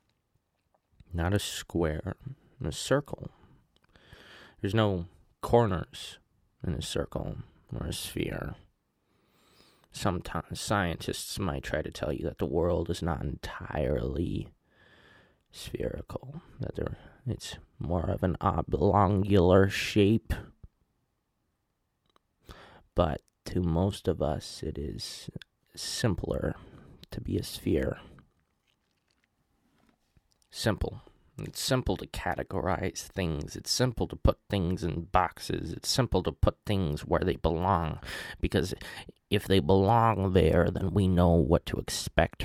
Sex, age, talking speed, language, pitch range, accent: male, 20-39, 115 wpm, English, 85-100 Hz, American